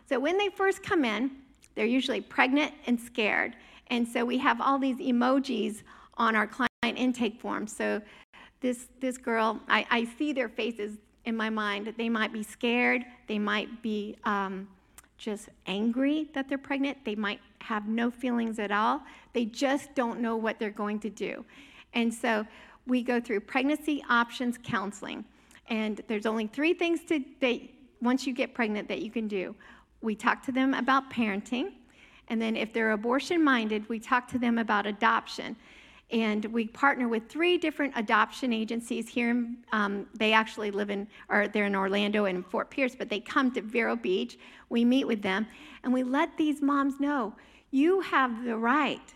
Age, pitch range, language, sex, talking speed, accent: 50-69, 220-270 Hz, English, female, 175 wpm, American